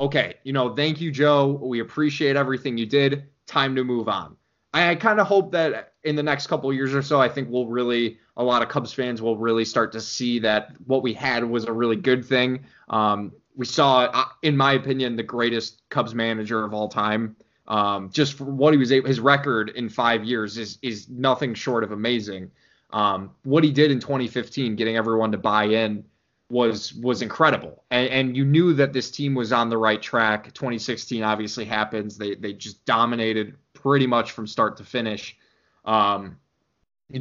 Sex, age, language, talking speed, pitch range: male, 20-39, English, 200 wpm, 110-140 Hz